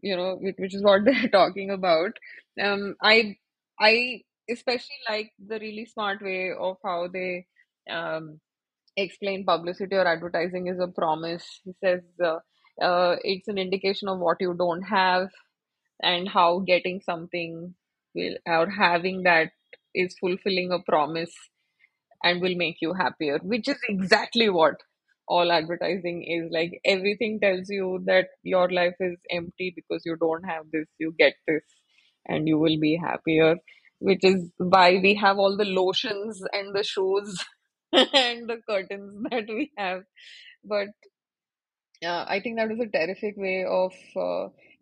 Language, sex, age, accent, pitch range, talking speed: English, female, 20-39, Indian, 175-210 Hz, 155 wpm